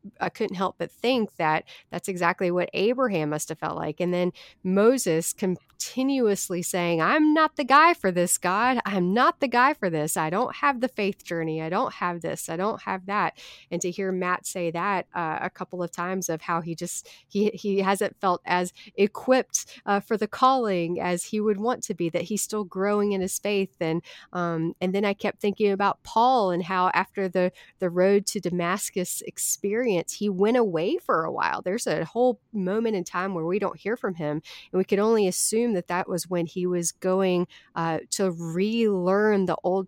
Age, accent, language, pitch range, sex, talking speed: 30-49, American, English, 175-215 Hz, female, 205 wpm